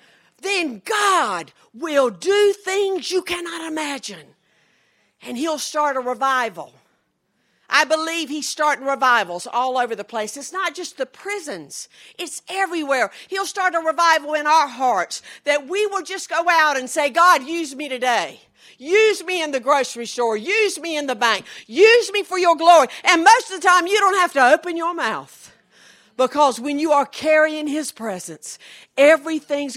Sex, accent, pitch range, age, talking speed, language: female, American, 240-350 Hz, 50-69, 170 wpm, English